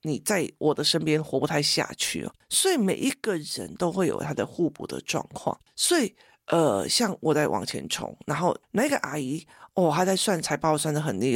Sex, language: male, Chinese